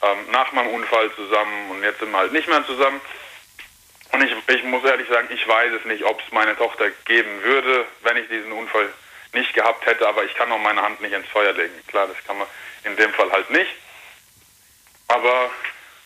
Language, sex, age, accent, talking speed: German, male, 20-39, German, 205 wpm